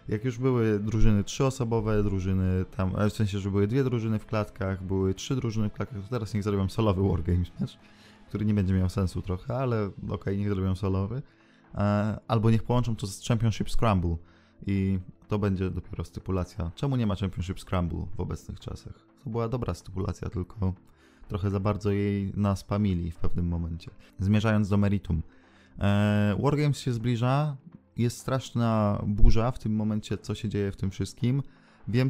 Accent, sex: native, male